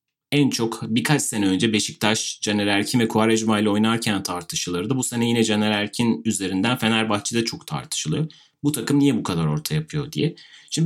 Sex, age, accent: male, 30-49, native